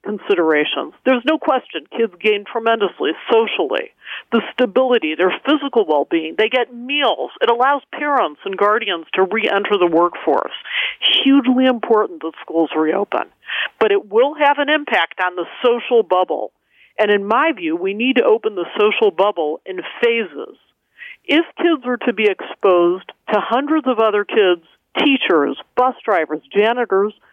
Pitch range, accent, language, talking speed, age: 200-280 Hz, American, English, 150 wpm, 50-69